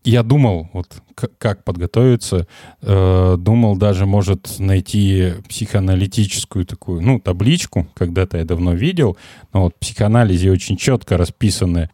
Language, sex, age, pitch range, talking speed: Russian, male, 20-39, 90-120 Hz, 130 wpm